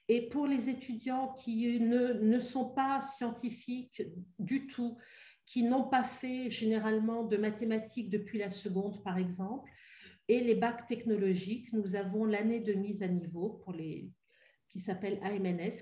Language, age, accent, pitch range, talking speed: French, 50-69, French, 195-230 Hz, 150 wpm